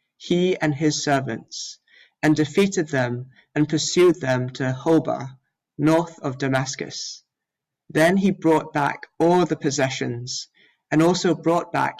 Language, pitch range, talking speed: English, 135-165 Hz, 130 wpm